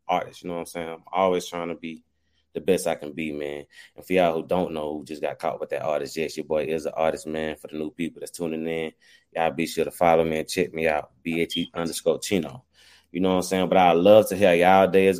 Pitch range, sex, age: 85-115 Hz, male, 20-39